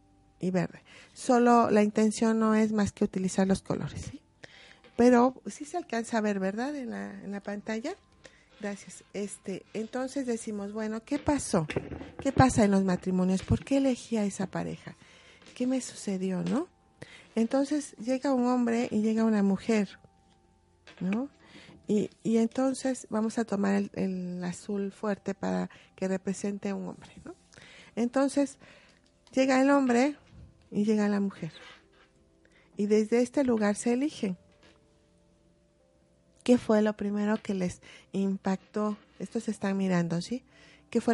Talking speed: 145 wpm